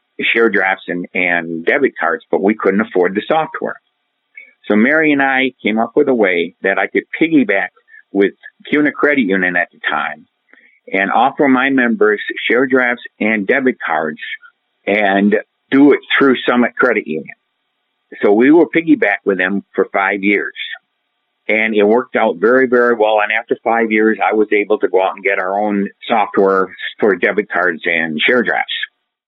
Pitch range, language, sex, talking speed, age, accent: 100-145 Hz, English, male, 175 wpm, 50-69, American